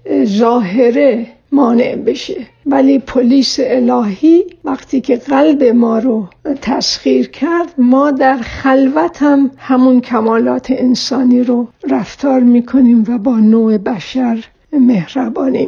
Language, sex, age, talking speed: Persian, female, 60-79, 105 wpm